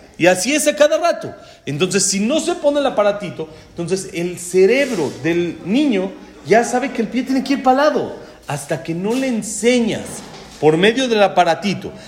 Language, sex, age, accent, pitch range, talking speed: Spanish, male, 40-59, Mexican, 170-240 Hz, 180 wpm